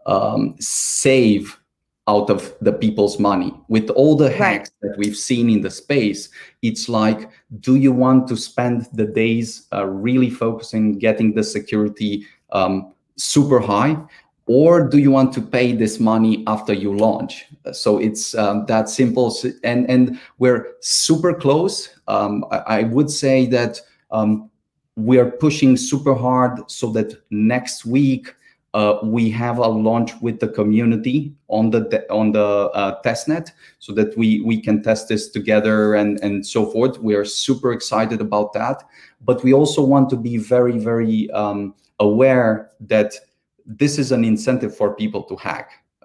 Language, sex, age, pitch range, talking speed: English, male, 30-49, 105-125 Hz, 165 wpm